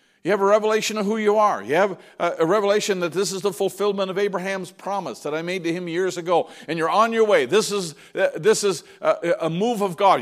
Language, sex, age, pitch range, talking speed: English, male, 50-69, 185-225 Hz, 235 wpm